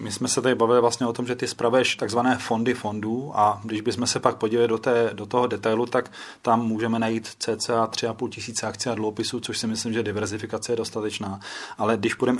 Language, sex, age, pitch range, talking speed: Czech, male, 30-49, 110-120 Hz, 215 wpm